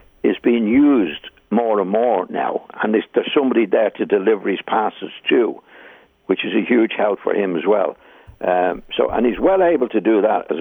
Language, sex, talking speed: English, male, 200 wpm